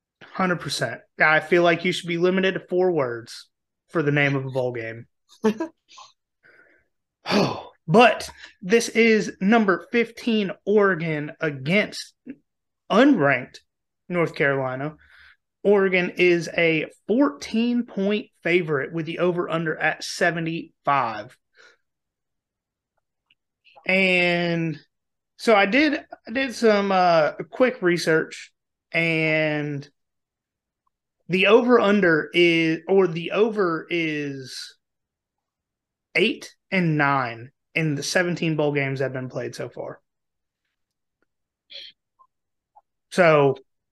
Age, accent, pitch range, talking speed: 30-49, American, 150-195 Hz, 100 wpm